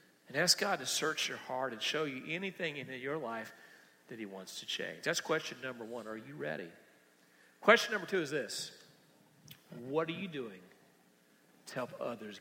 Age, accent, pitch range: 50-69, American, 130-210 Hz